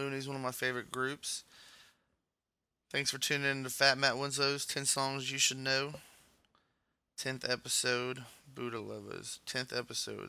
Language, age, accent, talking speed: English, 20-39, American, 145 wpm